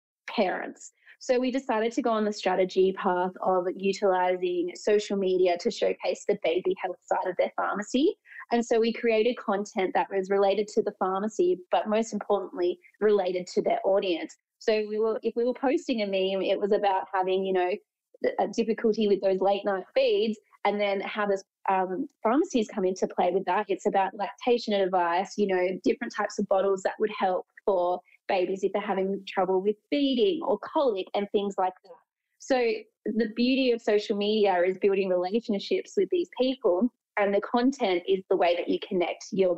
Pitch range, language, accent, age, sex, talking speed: 190-235 Hz, English, Australian, 20-39, female, 185 wpm